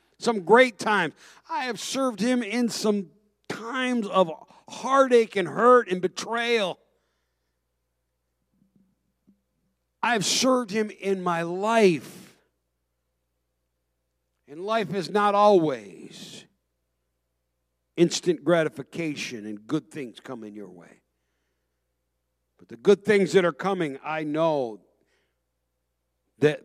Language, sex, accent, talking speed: English, male, American, 105 wpm